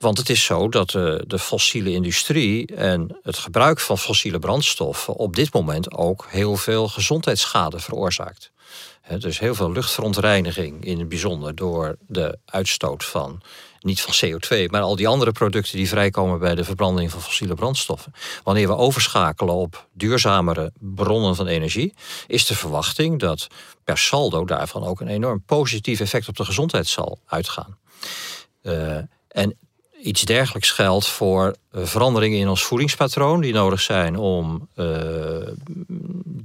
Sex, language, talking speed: male, Dutch, 145 wpm